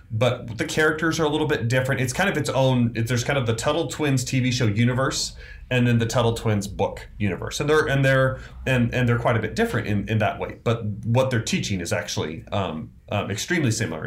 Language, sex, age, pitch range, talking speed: English, male, 30-49, 100-125 Hz, 230 wpm